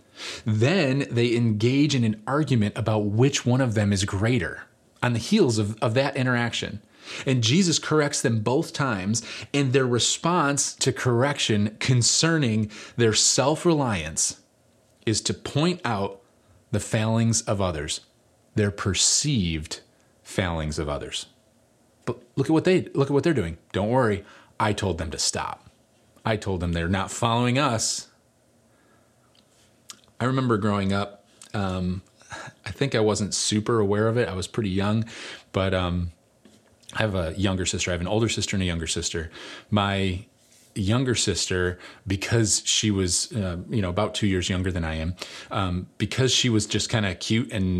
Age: 30-49